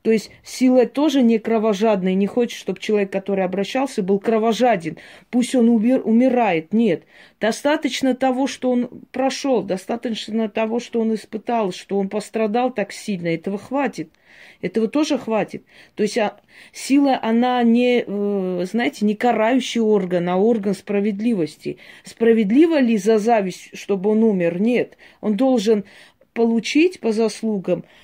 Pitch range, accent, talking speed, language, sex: 190-235 Hz, native, 140 wpm, Russian, female